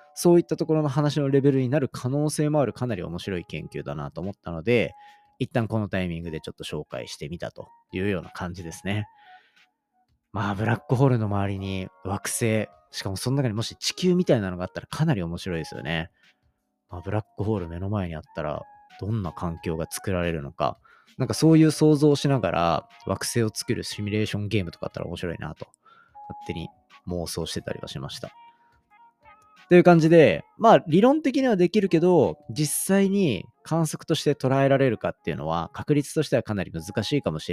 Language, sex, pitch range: Japanese, male, 95-160 Hz